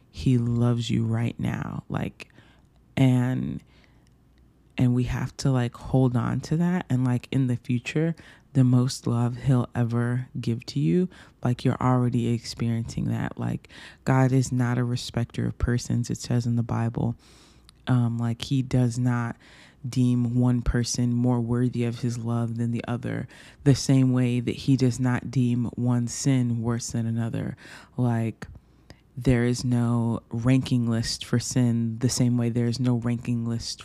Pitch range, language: 115-130 Hz, English